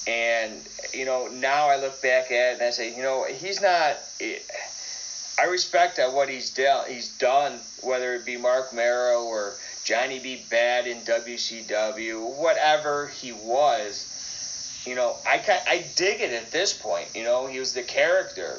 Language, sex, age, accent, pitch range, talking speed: English, male, 30-49, American, 115-150 Hz, 175 wpm